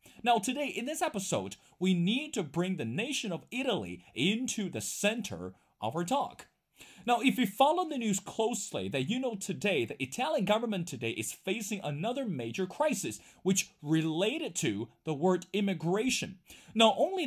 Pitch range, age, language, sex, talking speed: 165-225 Hz, 30-49, English, male, 165 wpm